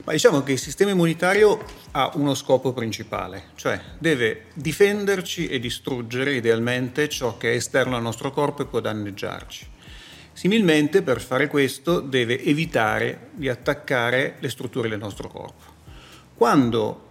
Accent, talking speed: native, 140 wpm